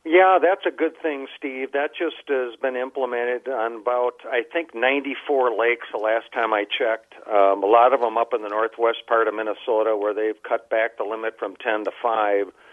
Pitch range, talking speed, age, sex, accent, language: 110-150 Hz, 205 wpm, 50-69, male, American, English